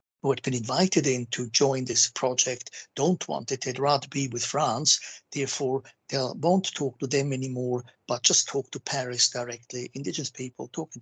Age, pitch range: 60-79, 125-145 Hz